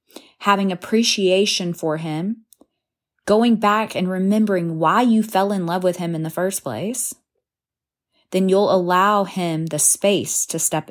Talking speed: 150 wpm